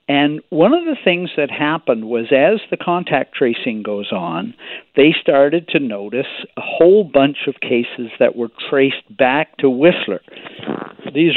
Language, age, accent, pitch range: English, 60-79, American, 140-200 Hz